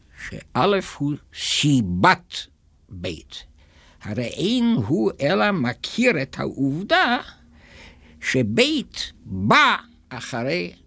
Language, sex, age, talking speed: Hebrew, male, 60-79, 75 wpm